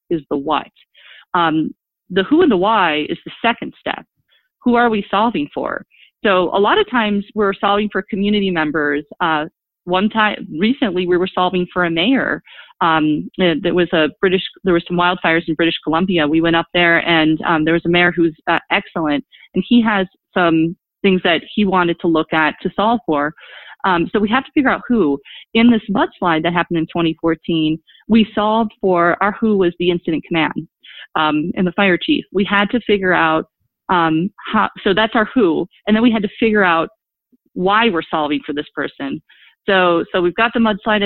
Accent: American